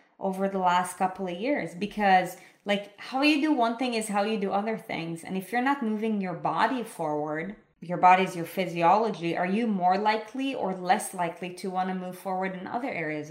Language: English